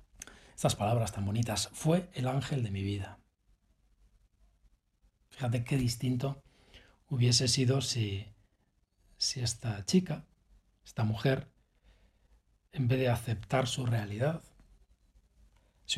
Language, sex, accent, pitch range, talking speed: Spanish, male, Spanish, 105-140 Hz, 105 wpm